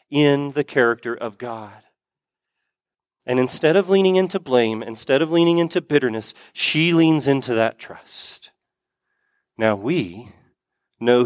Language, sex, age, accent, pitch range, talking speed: English, male, 40-59, American, 155-215 Hz, 130 wpm